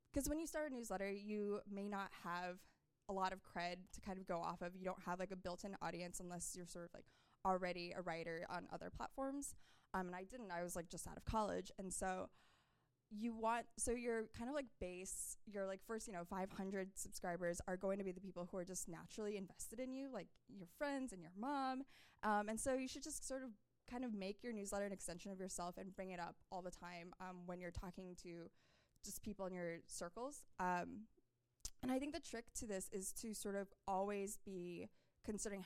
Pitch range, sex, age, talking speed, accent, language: 180-220 Hz, female, 20-39, 225 wpm, American, English